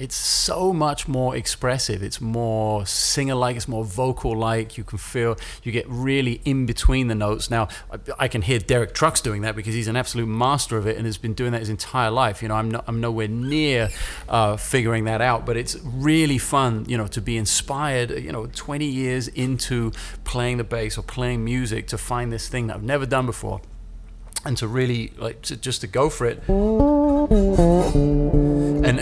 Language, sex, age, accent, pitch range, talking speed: English, male, 30-49, British, 110-130 Hz, 205 wpm